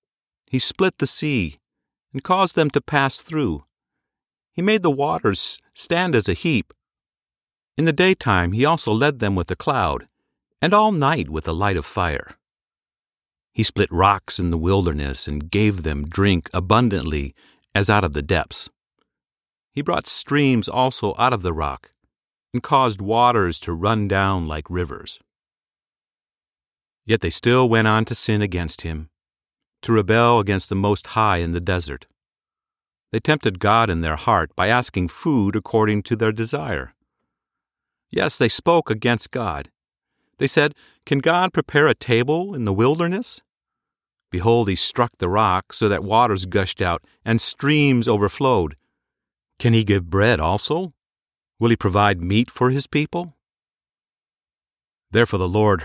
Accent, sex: American, male